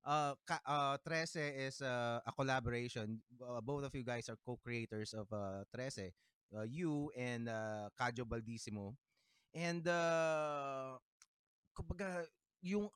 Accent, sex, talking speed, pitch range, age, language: Filipino, male, 120 wpm, 125-160 Hz, 20-39, English